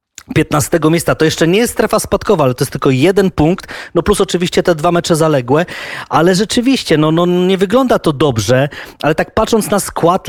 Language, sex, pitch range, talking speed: Polish, male, 145-175 Hz, 200 wpm